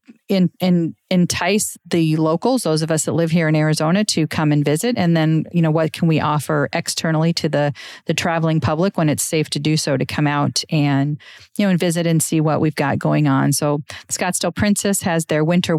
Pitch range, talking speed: 155-185 Hz, 215 wpm